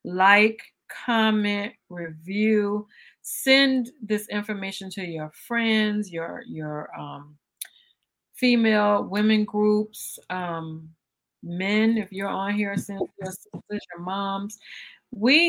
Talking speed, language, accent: 100 wpm, English, American